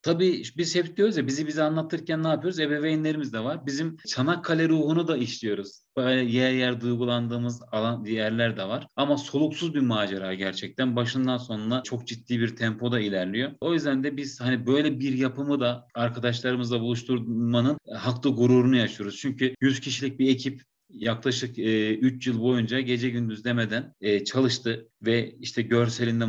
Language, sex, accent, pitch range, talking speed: English, male, Turkish, 115-135 Hz, 160 wpm